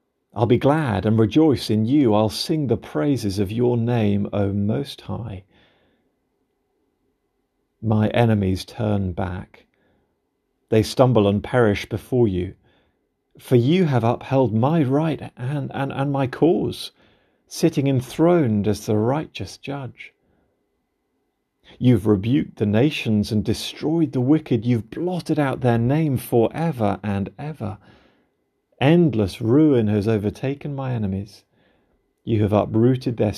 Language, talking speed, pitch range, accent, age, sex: English, 125 wpm, 105-135 Hz, British, 40-59, male